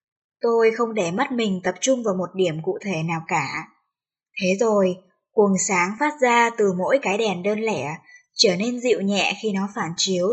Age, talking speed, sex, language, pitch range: 10-29, 200 wpm, male, Vietnamese, 185-235 Hz